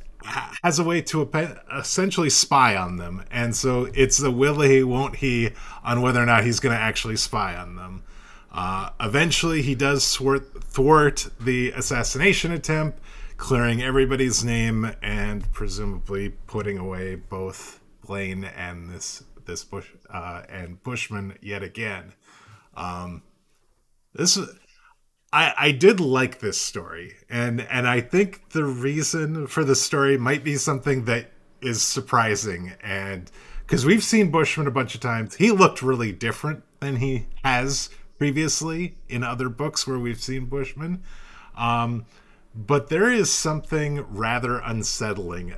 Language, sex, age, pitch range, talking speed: English, male, 30-49, 105-145 Hz, 140 wpm